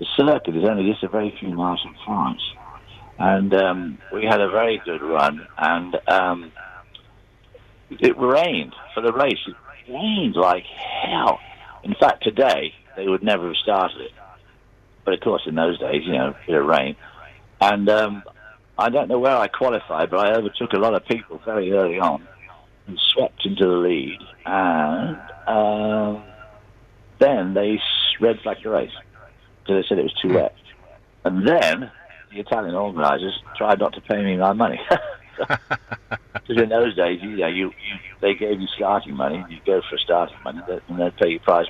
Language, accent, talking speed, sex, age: English, British, 175 wpm, male, 60-79